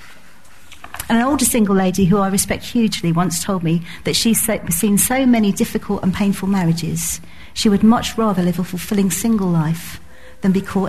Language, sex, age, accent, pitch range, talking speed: English, female, 40-59, British, 180-220 Hz, 175 wpm